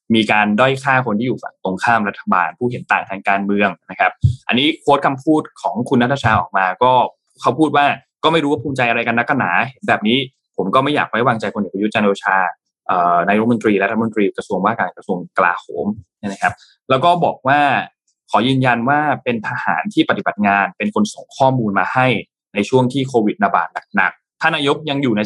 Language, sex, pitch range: Thai, male, 105-140 Hz